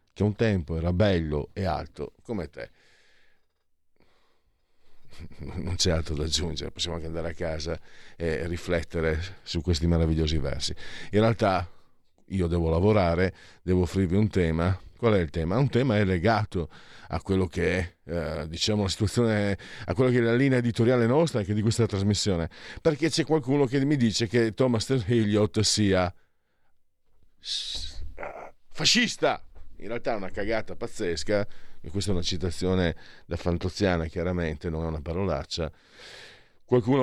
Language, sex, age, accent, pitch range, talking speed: Italian, male, 50-69, native, 85-115 Hz, 150 wpm